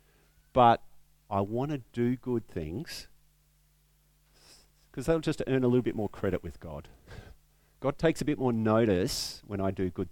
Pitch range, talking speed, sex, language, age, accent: 100-150 Hz, 165 wpm, male, English, 50-69, Australian